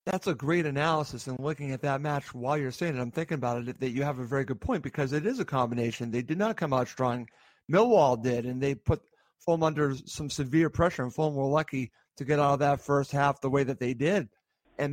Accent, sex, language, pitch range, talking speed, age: American, male, English, 135-160 Hz, 250 wpm, 50-69